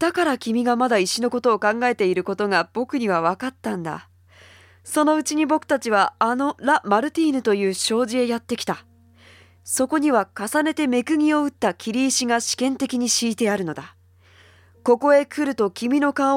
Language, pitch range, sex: Japanese, 195-295 Hz, female